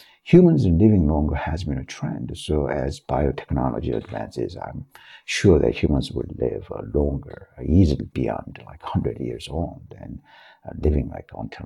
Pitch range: 75-130 Hz